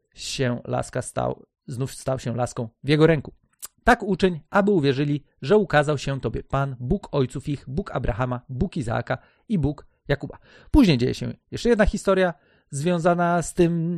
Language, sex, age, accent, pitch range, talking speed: Polish, male, 40-59, native, 135-175 Hz, 165 wpm